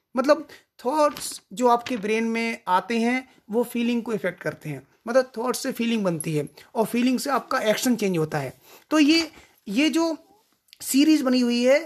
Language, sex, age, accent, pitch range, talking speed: Hindi, male, 30-49, native, 205-265 Hz, 180 wpm